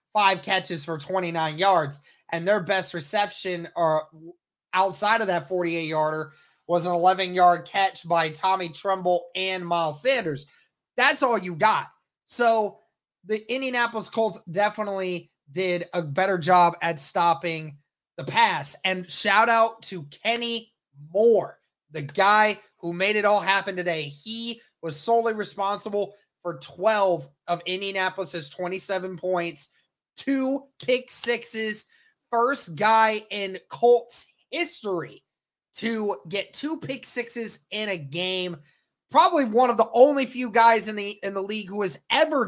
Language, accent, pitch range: English, American, 175-220 Hz